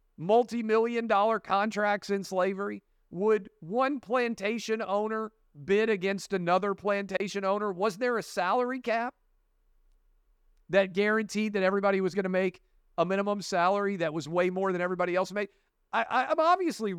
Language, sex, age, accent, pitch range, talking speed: English, male, 50-69, American, 135-210 Hz, 150 wpm